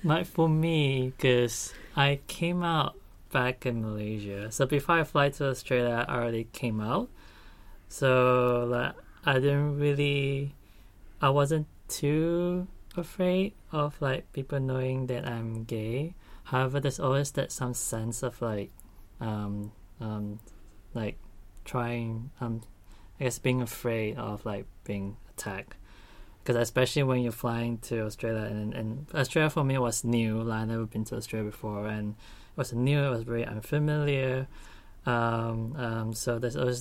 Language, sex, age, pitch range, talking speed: English, male, 20-39, 105-140 Hz, 150 wpm